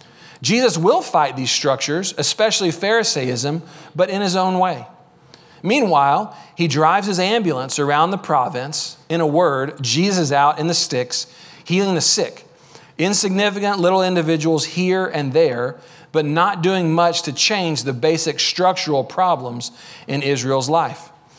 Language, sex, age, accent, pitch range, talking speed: English, male, 40-59, American, 150-190 Hz, 140 wpm